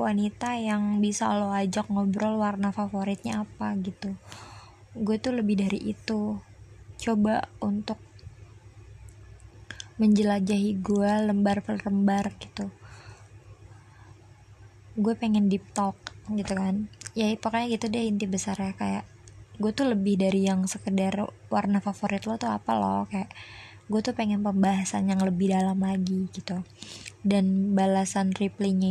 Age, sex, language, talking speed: 20-39, female, Indonesian, 125 wpm